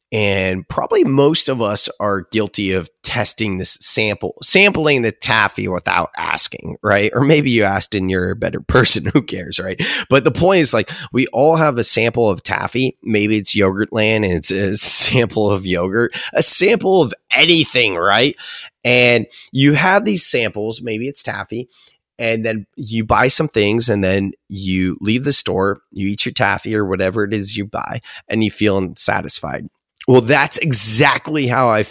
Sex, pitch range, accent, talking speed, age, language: male, 100-130 Hz, American, 180 wpm, 30-49, English